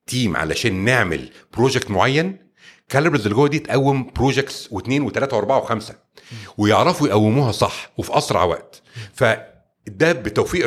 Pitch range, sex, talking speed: 110-145 Hz, male, 130 wpm